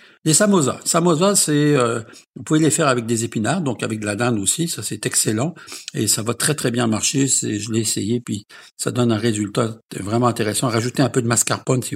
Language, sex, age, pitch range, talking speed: French, male, 60-79, 115-155 Hz, 220 wpm